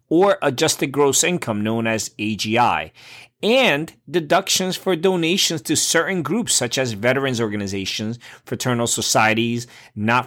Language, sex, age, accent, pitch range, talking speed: English, male, 30-49, American, 115-155 Hz, 125 wpm